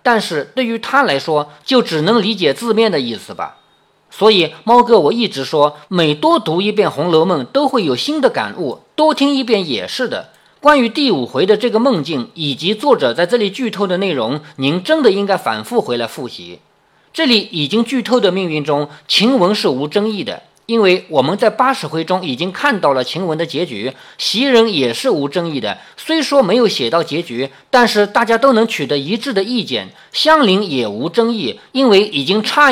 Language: Chinese